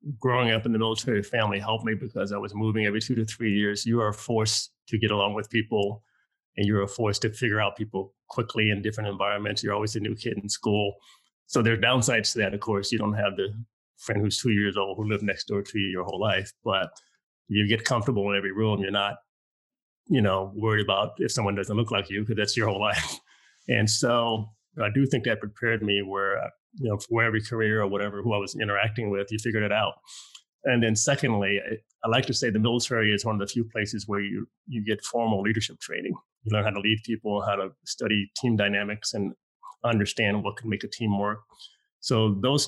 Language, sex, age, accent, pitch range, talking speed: English, male, 30-49, American, 100-115 Hz, 230 wpm